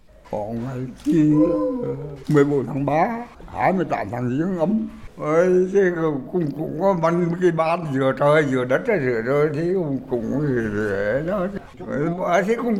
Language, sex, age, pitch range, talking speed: Vietnamese, male, 60-79, 150-185 Hz, 50 wpm